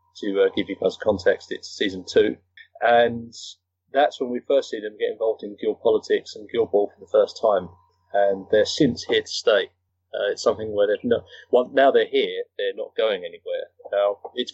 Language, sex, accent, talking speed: English, male, British, 205 wpm